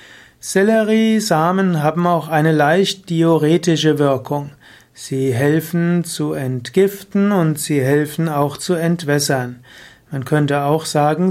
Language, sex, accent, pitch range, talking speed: German, male, German, 145-175 Hz, 110 wpm